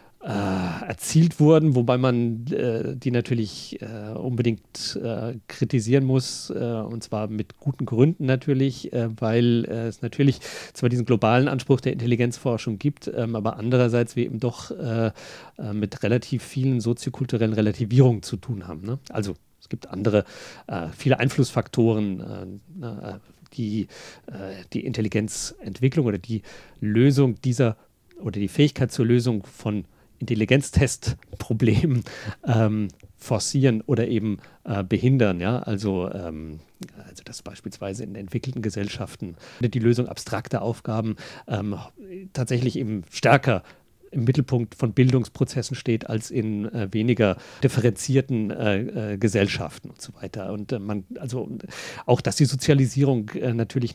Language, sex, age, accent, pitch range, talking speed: German, male, 40-59, German, 105-130 Hz, 135 wpm